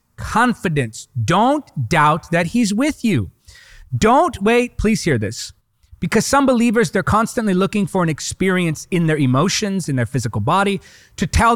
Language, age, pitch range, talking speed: English, 30-49, 145-220 Hz, 155 wpm